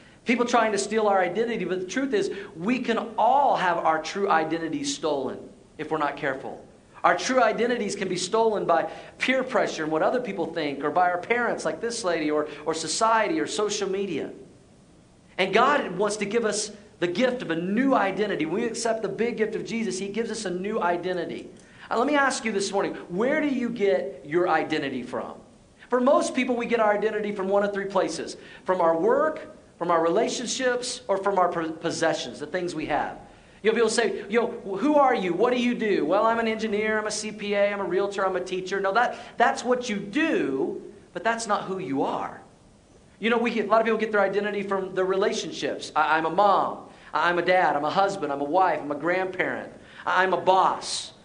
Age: 40-59